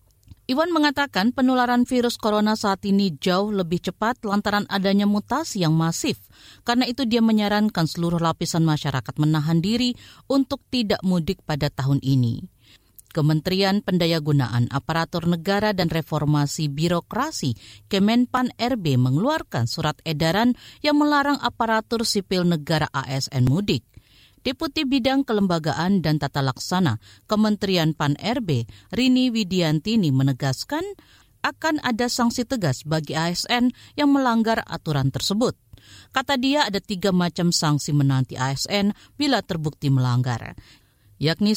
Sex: female